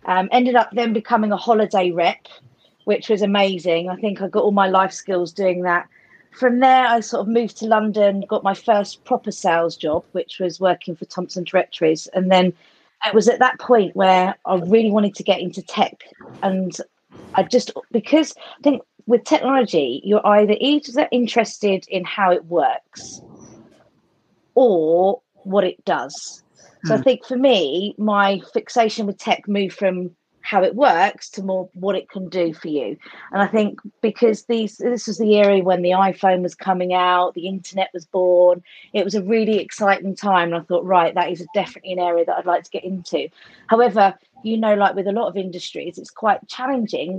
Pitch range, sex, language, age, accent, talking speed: 180-225 Hz, female, English, 40-59, British, 190 wpm